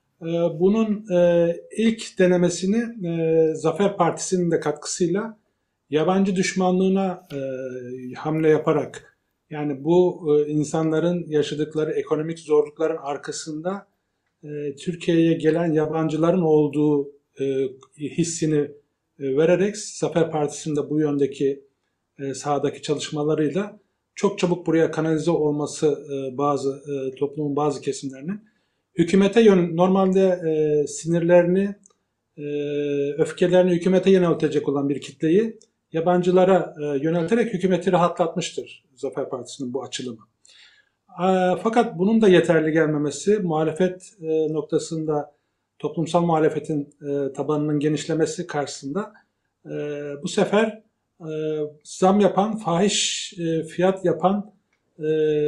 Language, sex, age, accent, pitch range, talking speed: Turkish, male, 50-69, native, 150-180 Hz, 95 wpm